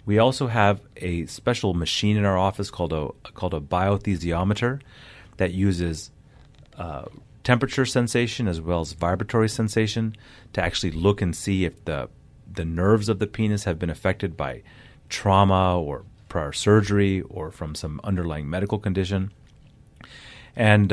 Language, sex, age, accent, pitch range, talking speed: English, male, 30-49, American, 90-110 Hz, 145 wpm